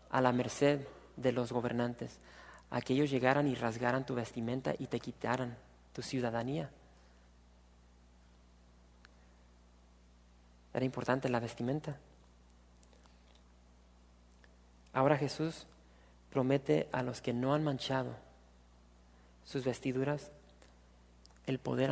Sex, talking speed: male, 95 wpm